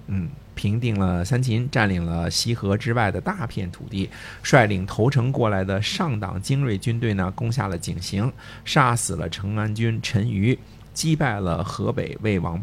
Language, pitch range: Chinese, 95-135 Hz